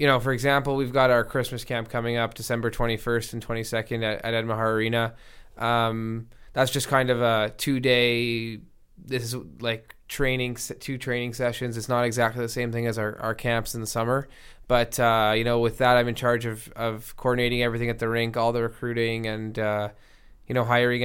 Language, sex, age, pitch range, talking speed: English, male, 20-39, 115-125 Hz, 195 wpm